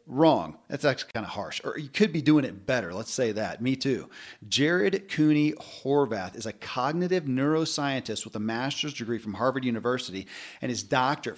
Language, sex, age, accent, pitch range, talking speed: English, male, 40-59, American, 120-150 Hz, 185 wpm